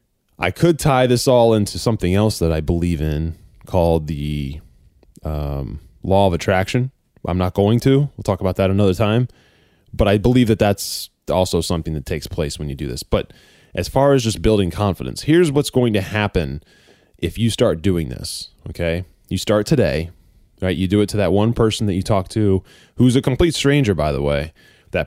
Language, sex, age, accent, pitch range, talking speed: English, male, 20-39, American, 80-110 Hz, 200 wpm